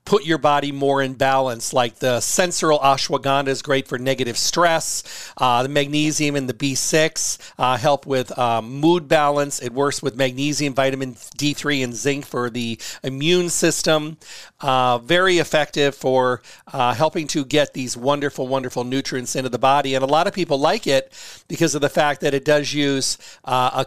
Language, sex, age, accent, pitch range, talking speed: English, male, 40-59, American, 130-150 Hz, 180 wpm